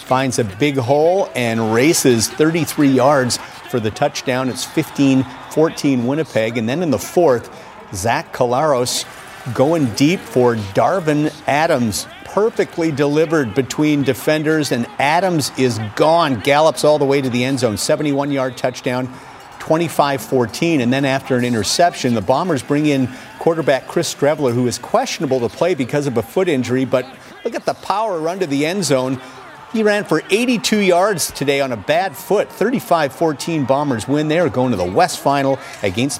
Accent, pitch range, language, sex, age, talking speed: American, 125-155 Hz, English, male, 50-69, 165 wpm